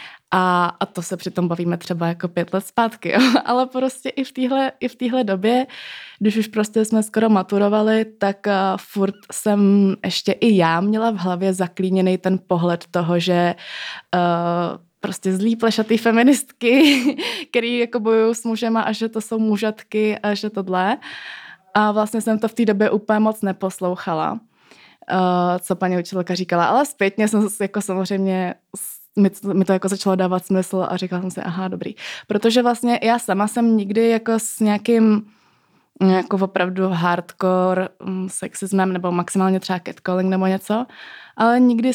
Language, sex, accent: Czech, female, native